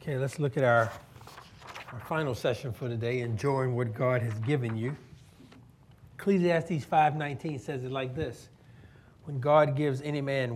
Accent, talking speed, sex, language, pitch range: American, 155 wpm, male, English, 125-170 Hz